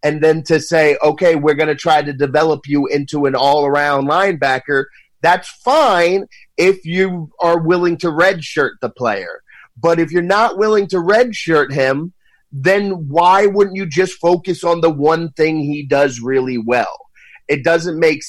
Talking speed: 165 wpm